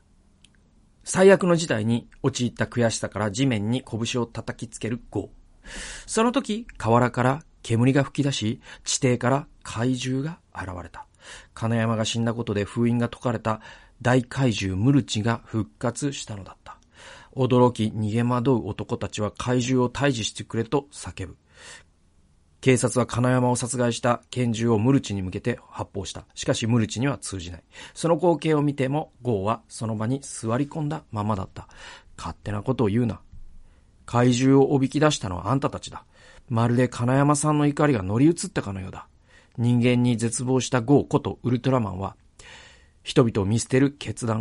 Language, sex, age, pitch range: Japanese, male, 40-59, 100-130 Hz